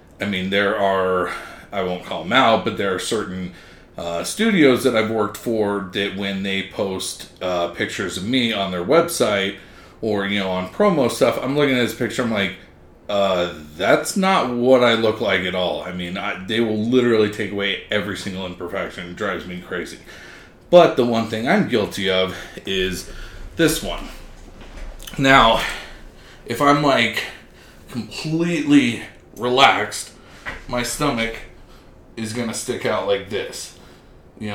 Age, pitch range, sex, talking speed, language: 30-49, 95-125 Hz, male, 160 wpm, English